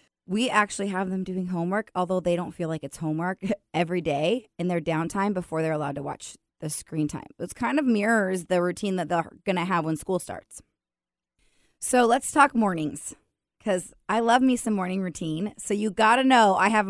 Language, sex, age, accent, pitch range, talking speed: English, female, 20-39, American, 170-205 Hz, 205 wpm